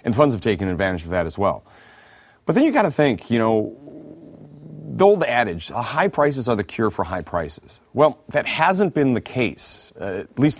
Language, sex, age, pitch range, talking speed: English, male, 30-49, 90-130 Hz, 210 wpm